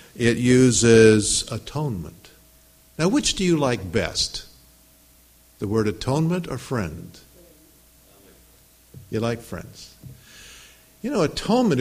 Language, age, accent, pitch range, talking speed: English, 50-69, American, 105-145 Hz, 100 wpm